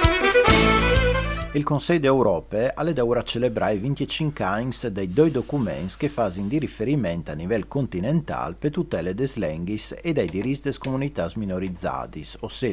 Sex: male